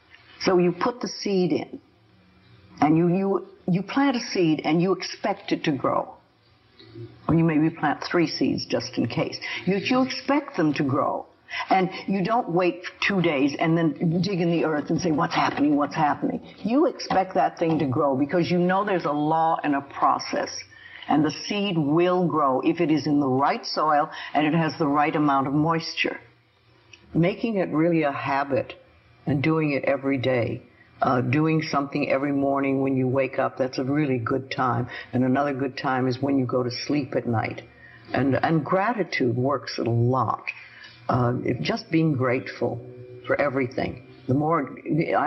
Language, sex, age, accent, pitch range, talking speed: English, female, 60-79, American, 130-175 Hz, 185 wpm